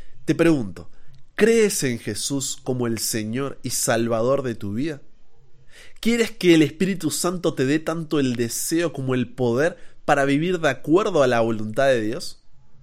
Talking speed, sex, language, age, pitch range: 165 wpm, male, Spanish, 30-49, 125-165 Hz